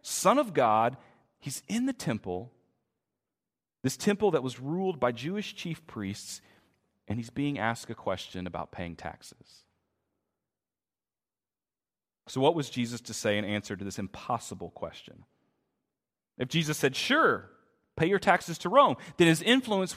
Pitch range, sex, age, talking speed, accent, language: 105-165 Hz, male, 40-59, 145 wpm, American, English